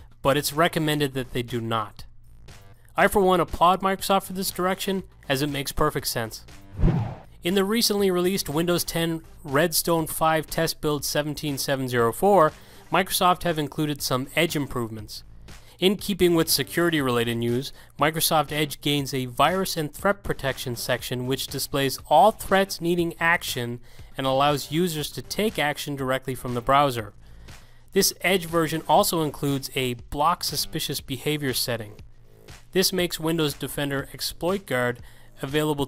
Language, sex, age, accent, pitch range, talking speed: English, male, 30-49, American, 125-160 Hz, 140 wpm